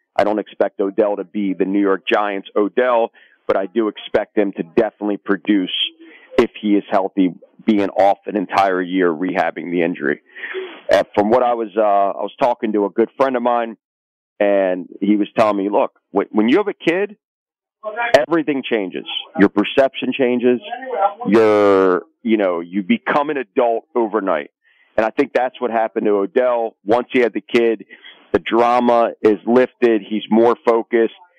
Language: English